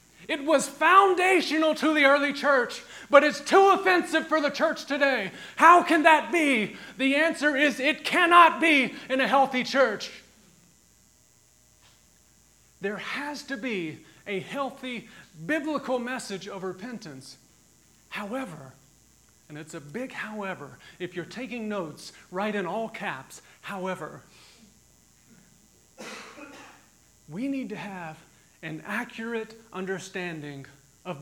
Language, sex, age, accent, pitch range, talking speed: English, male, 40-59, American, 170-265 Hz, 120 wpm